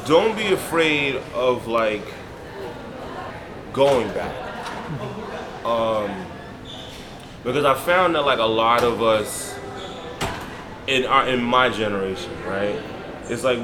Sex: male